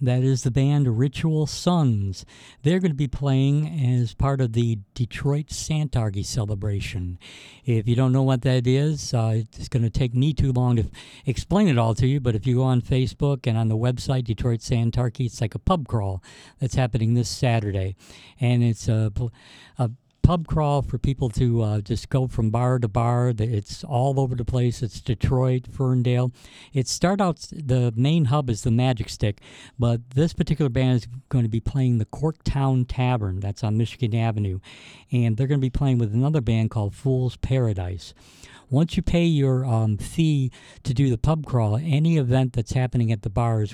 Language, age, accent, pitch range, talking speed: English, 60-79, American, 115-135 Hz, 190 wpm